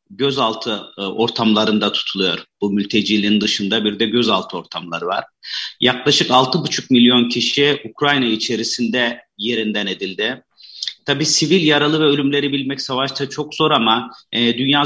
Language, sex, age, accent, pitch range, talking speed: Turkish, male, 40-59, native, 115-135 Hz, 120 wpm